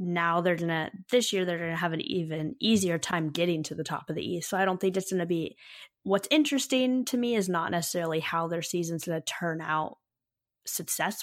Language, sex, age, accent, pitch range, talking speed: English, female, 10-29, American, 165-190 Hz, 235 wpm